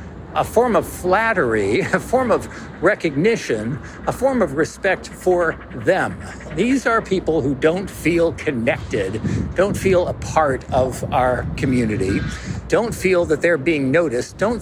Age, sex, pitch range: 60-79, male, 130-190 Hz